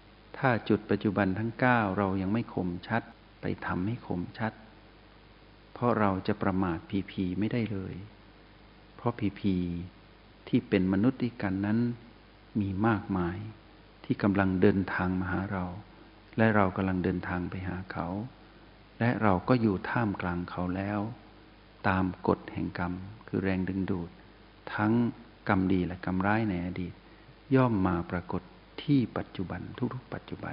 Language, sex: Thai, male